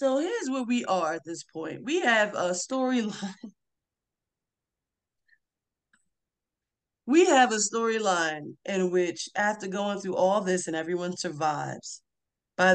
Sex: female